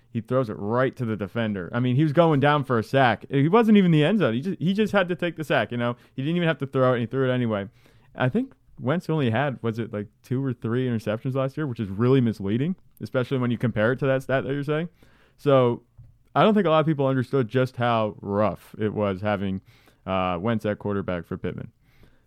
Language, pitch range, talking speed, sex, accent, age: English, 105-130 Hz, 255 wpm, male, American, 30-49